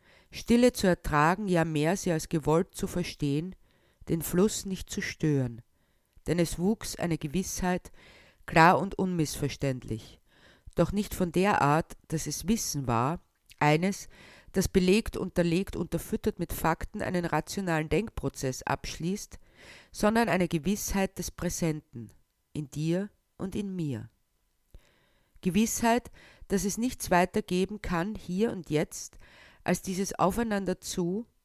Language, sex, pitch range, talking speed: German, female, 155-195 Hz, 125 wpm